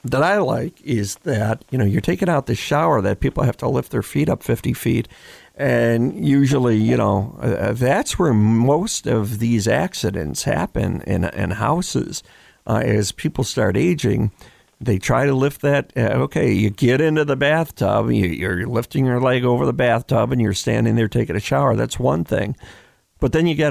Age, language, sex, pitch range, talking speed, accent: 50-69, English, male, 105-140 Hz, 190 wpm, American